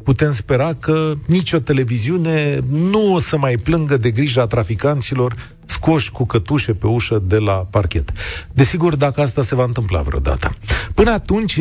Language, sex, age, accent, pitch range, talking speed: Romanian, male, 40-59, native, 110-160 Hz, 155 wpm